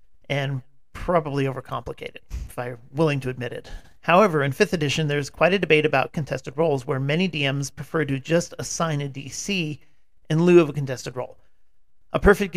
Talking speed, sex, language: 175 wpm, male, English